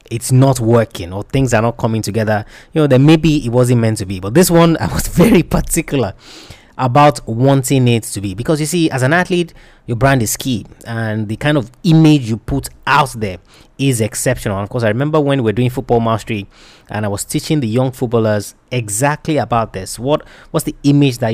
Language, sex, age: English, male, 20-39